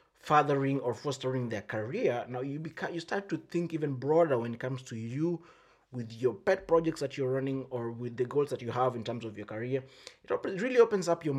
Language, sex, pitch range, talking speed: English, male, 125-150 Hz, 235 wpm